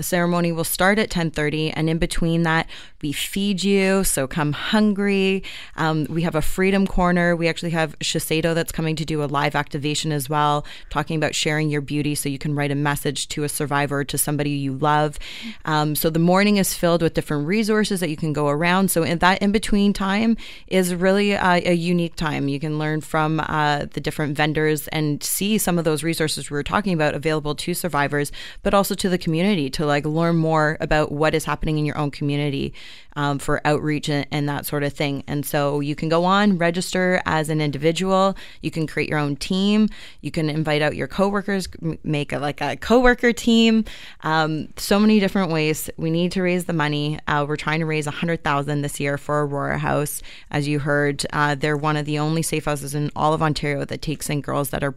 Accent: American